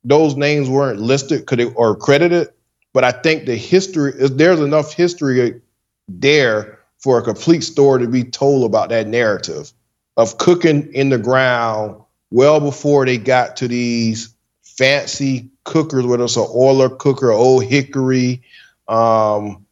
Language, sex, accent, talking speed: English, male, American, 150 wpm